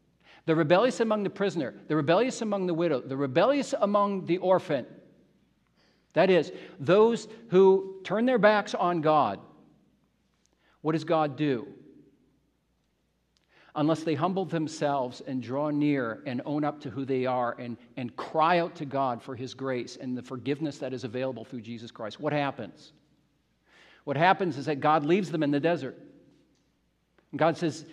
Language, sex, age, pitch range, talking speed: English, male, 50-69, 140-175 Hz, 160 wpm